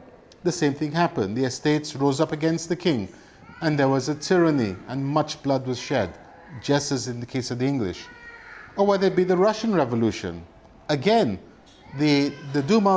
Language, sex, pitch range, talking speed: English, male, 120-165 Hz, 185 wpm